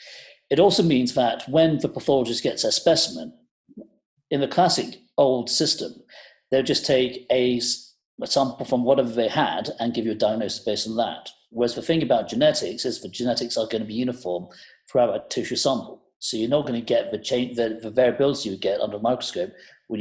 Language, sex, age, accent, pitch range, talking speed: English, male, 40-59, British, 115-145 Hz, 200 wpm